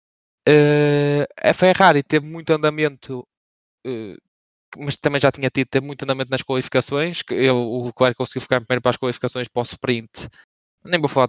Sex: male